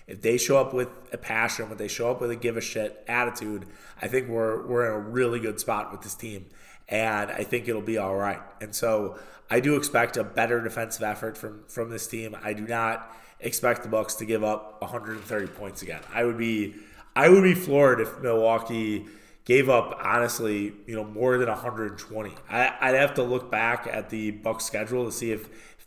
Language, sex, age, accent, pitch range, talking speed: English, male, 20-39, American, 105-115 Hz, 215 wpm